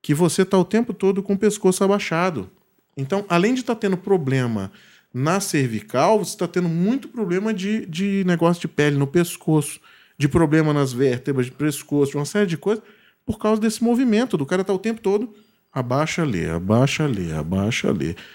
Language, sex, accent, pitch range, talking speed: Portuguese, male, Brazilian, 135-215 Hz, 190 wpm